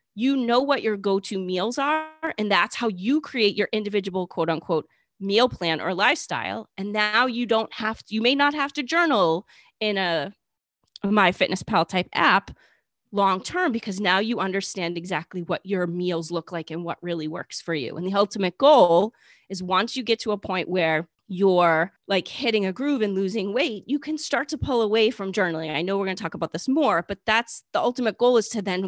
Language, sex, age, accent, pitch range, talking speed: English, female, 30-49, American, 175-220 Hz, 200 wpm